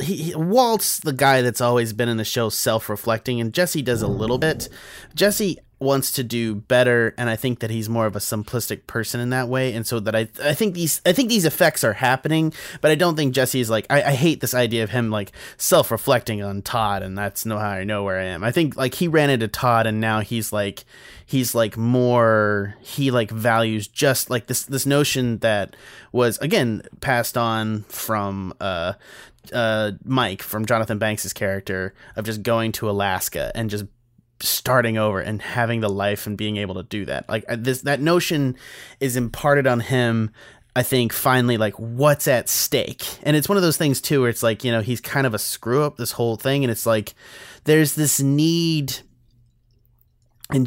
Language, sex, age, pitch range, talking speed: English, male, 30-49, 110-135 Hz, 205 wpm